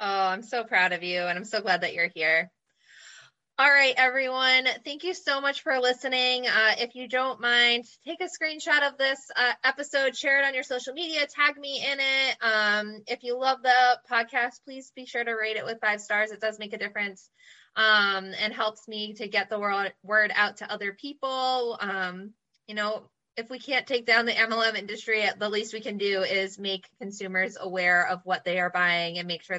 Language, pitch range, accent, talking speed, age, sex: English, 200-255 Hz, American, 210 wpm, 20-39, female